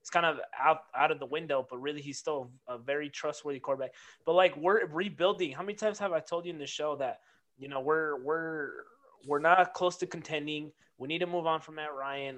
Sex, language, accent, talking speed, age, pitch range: male, English, American, 235 wpm, 20-39, 140-165 Hz